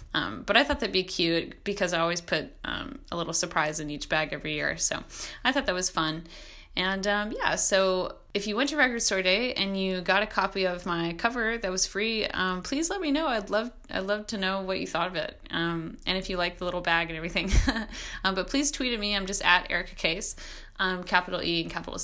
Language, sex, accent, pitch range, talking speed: English, female, American, 170-210 Hz, 245 wpm